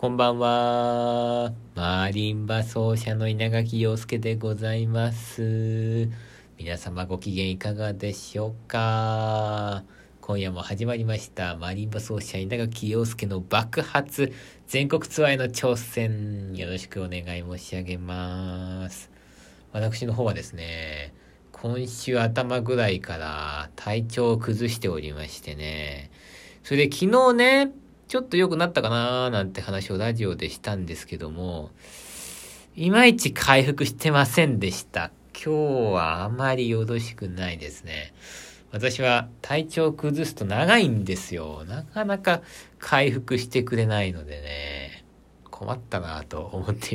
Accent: native